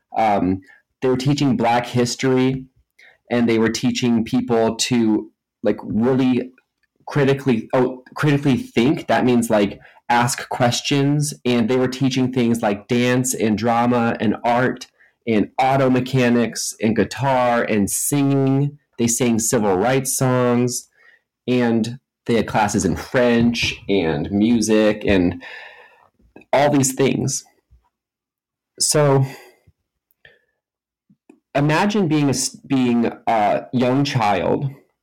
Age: 30-49